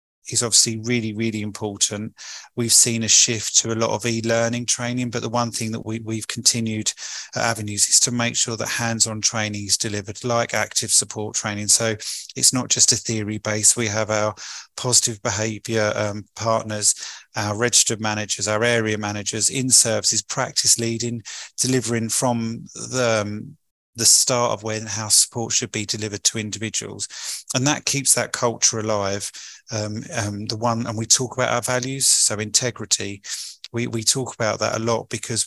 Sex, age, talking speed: male, 30-49, 175 wpm